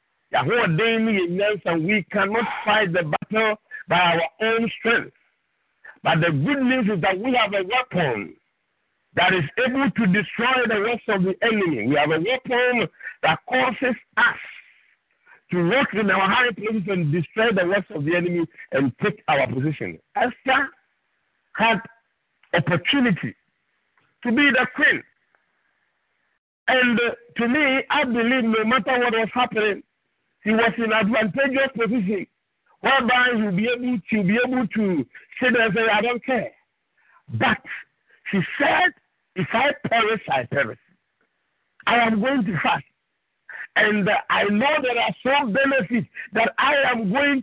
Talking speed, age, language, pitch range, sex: 150 wpm, 50-69, English, 195-255 Hz, male